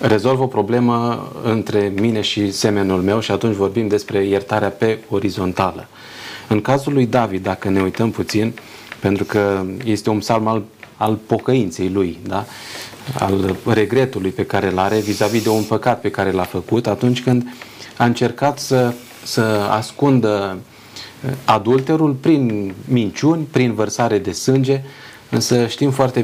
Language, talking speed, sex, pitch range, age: Romanian, 145 wpm, male, 105-130 Hz, 30-49